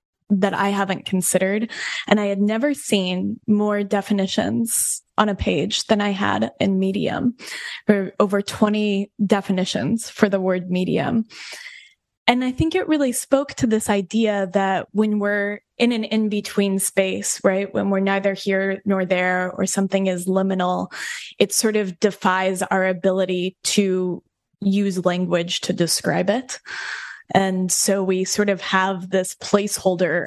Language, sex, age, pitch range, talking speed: English, female, 10-29, 185-210 Hz, 145 wpm